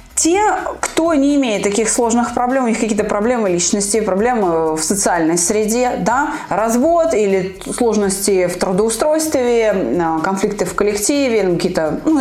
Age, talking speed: 20-39, 140 wpm